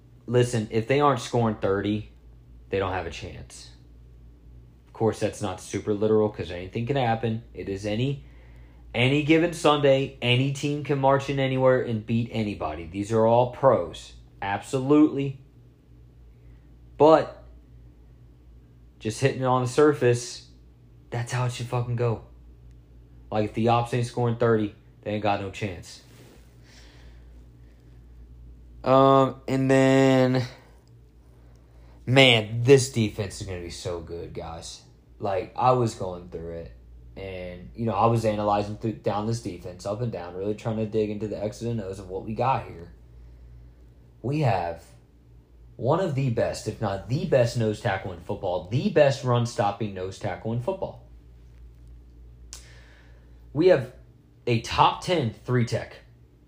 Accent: American